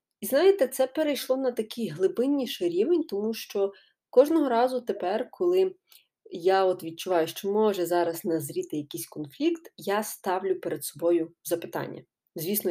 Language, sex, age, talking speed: Ukrainian, female, 20-39, 135 wpm